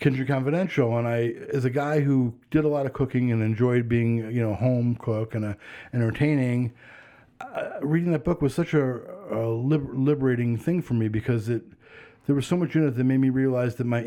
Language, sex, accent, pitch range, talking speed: English, male, American, 115-145 Hz, 215 wpm